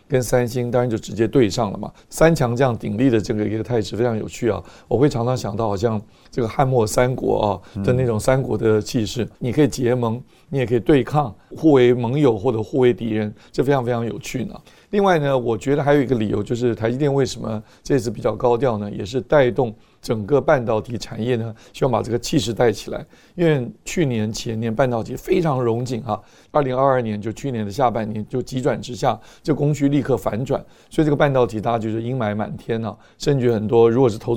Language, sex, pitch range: Chinese, male, 110-130 Hz